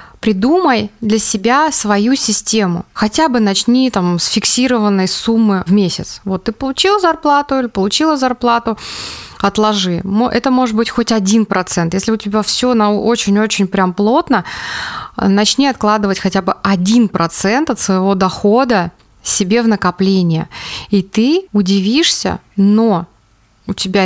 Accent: native